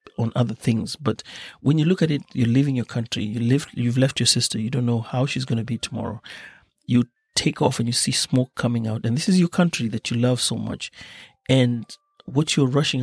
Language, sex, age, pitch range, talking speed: Swahili, male, 30-49, 120-150 Hz, 235 wpm